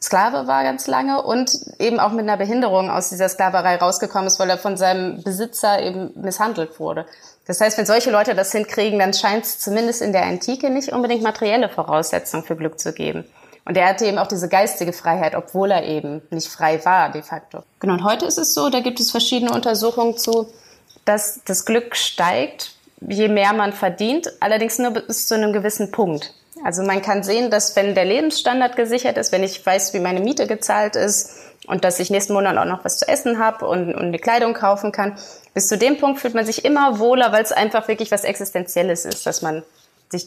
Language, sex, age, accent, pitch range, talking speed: German, female, 20-39, German, 185-230 Hz, 210 wpm